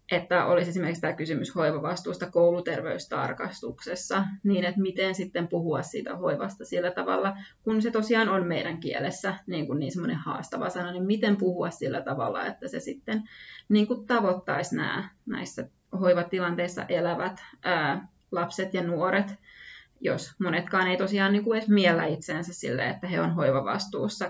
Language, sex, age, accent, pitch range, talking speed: Finnish, female, 20-39, native, 175-195 Hz, 150 wpm